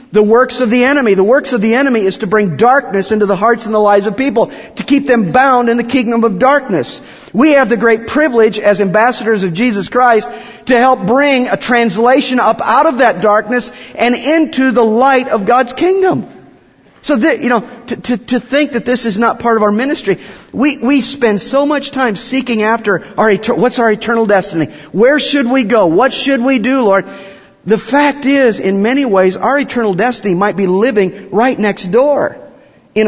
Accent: American